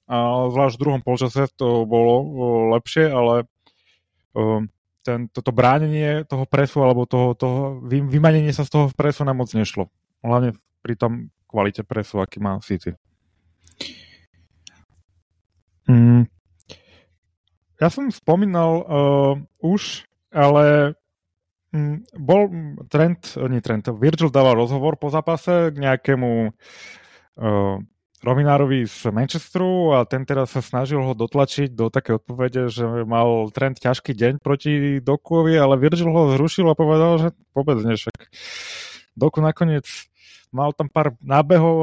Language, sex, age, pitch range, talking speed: Slovak, male, 30-49, 115-150 Hz, 130 wpm